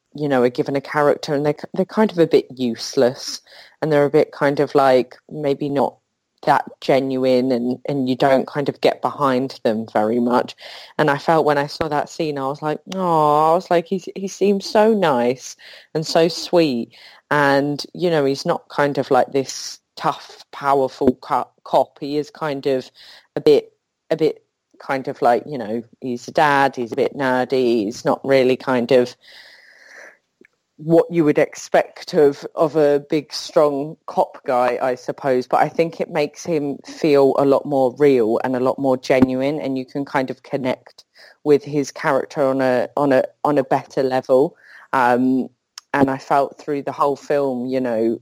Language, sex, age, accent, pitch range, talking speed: English, female, 30-49, British, 130-150 Hz, 190 wpm